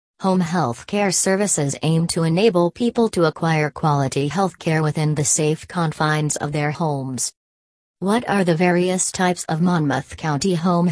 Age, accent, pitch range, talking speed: 40-59, American, 140-180 Hz, 160 wpm